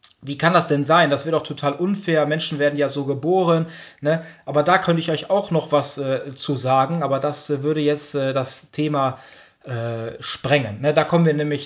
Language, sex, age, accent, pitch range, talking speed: German, male, 20-39, German, 135-155 Hz, 215 wpm